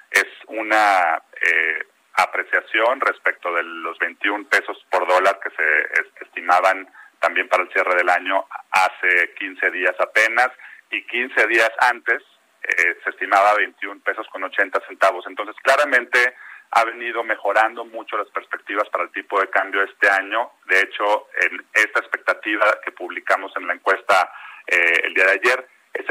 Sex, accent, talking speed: male, Mexican, 155 wpm